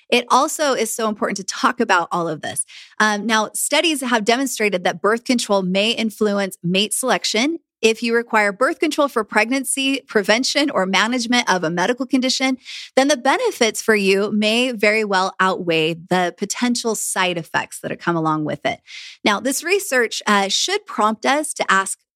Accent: American